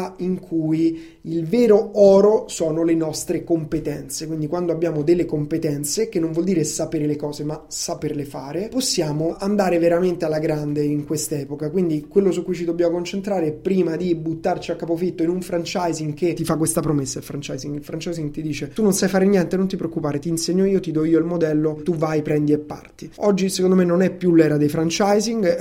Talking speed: 205 wpm